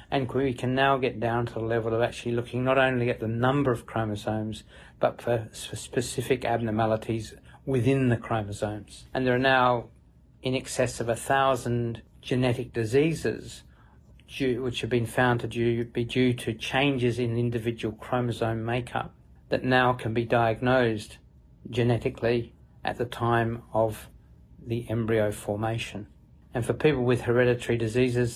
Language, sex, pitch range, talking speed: English, male, 110-125 Hz, 150 wpm